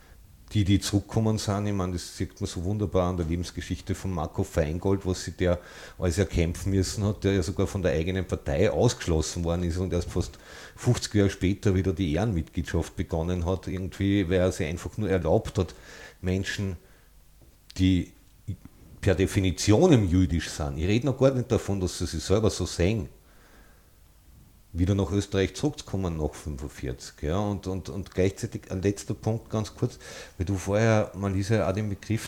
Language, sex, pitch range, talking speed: German, male, 85-100 Hz, 180 wpm